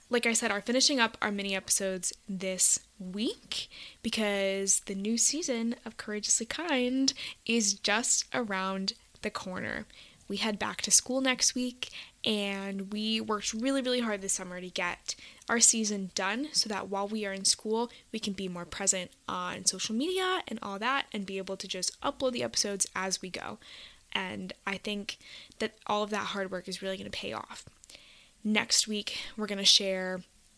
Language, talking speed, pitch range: English, 180 wpm, 190-235 Hz